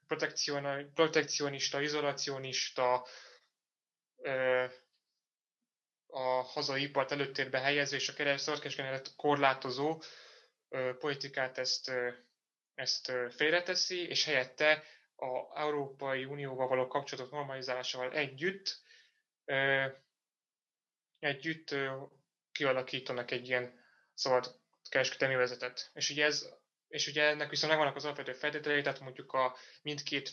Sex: male